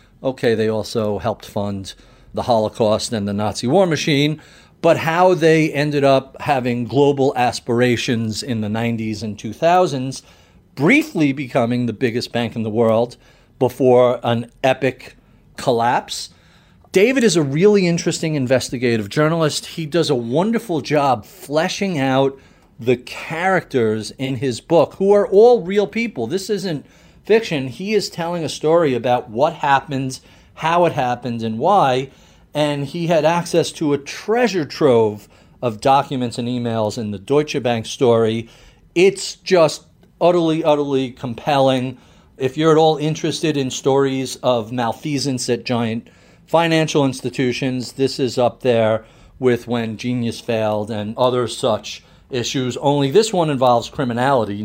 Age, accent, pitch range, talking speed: 40-59, American, 120-160 Hz, 140 wpm